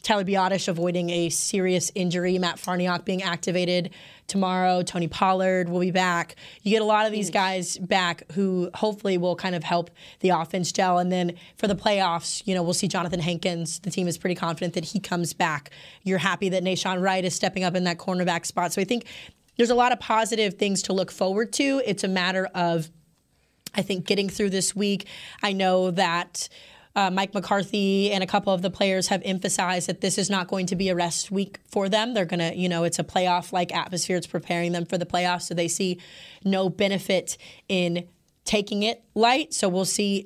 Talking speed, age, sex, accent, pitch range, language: 210 wpm, 20-39, female, American, 175-200 Hz, English